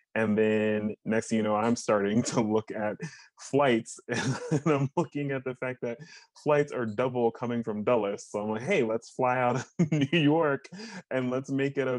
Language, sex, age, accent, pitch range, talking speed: English, male, 20-39, American, 100-120 Hz, 200 wpm